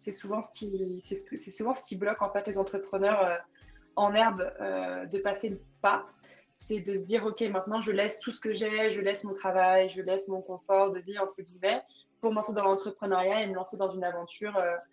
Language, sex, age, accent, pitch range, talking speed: French, female, 20-39, French, 185-215 Hz, 220 wpm